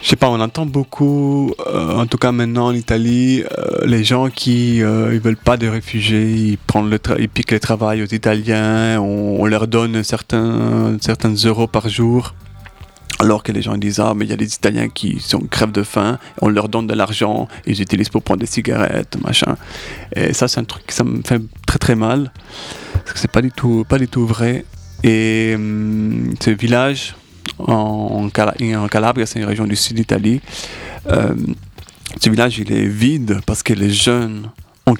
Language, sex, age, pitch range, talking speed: French, male, 30-49, 105-115 Hz, 195 wpm